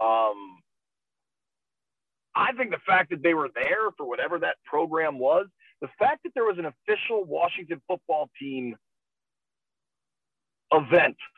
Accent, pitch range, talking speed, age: American, 145-210 Hz, 130 wpm, 40-59